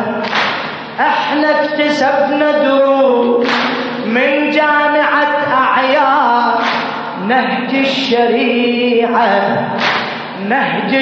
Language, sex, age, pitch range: Arabic, female, 20-39, 235-285 Hz